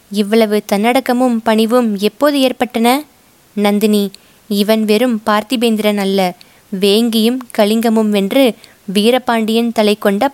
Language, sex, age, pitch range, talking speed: Tamil, female, 20-39, 200-235 Hz, 95 wpm